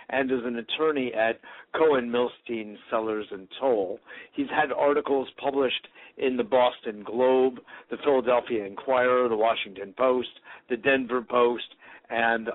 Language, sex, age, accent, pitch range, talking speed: English, male, 50-69, American, 115-135 Hz, 130 wpm